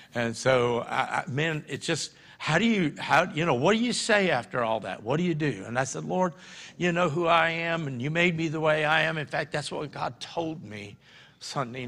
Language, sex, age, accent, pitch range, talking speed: English, male, 60-79, American, 120-160 Hz, 250 wpm